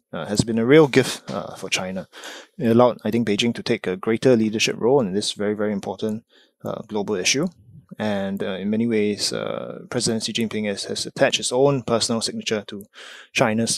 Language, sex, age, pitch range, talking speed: English, male, 20-39, 100-125 Hz, 200 wpm